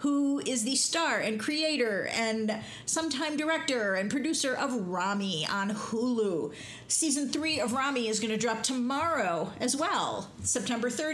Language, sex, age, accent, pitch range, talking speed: English, female, 50-69, American, 195-255 Hz, 145 wpm